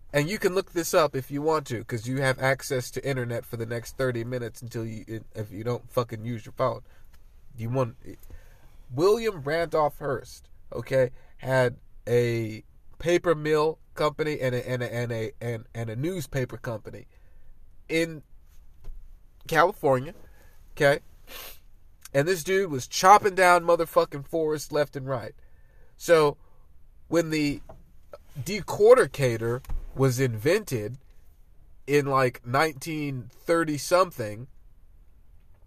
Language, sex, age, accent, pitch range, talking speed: English, male, 40-59, American, 120-165 Hz, 130 wpm